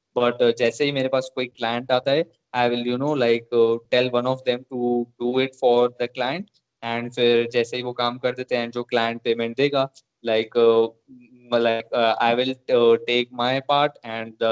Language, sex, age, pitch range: Hindi, male, 20-39, 120-135 Hz